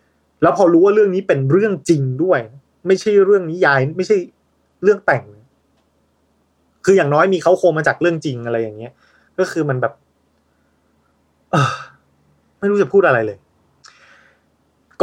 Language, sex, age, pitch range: Thai, male, 20-39, 110-150 Hz